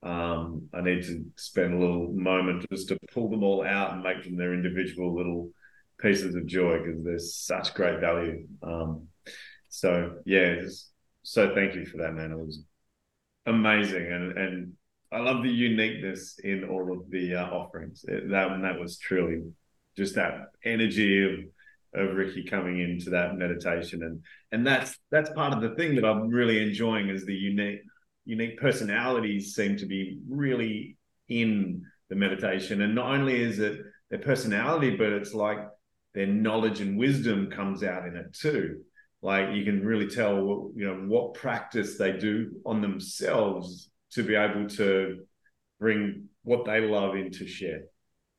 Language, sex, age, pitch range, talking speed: English, male, 30-49, 90-110 Hz, 165 wpm